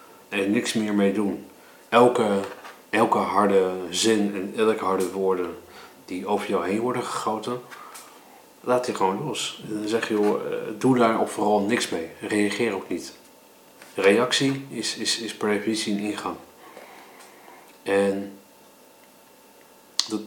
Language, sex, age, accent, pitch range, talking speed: Dutch, male, 40-59, Dutch, 95-115 Hz, 140 wpm